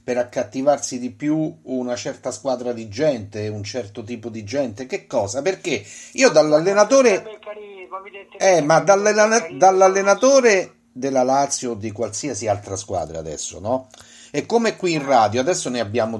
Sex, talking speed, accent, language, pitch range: male, 145 wpm, native, Italian, 115-165 Hz